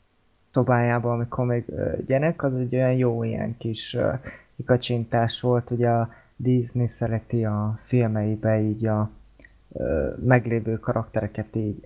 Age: 20-39